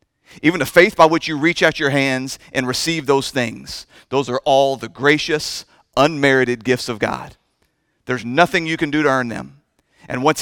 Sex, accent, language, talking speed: male, American, English, 190 wpm